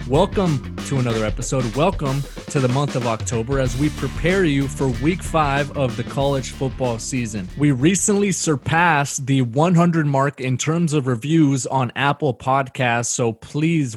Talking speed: 160 wpm